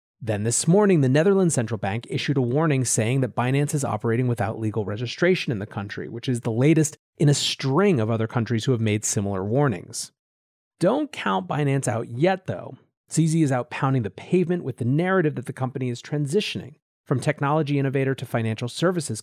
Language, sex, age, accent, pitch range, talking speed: English, male, 30-49, American, 115-155 Hz, 195 wpm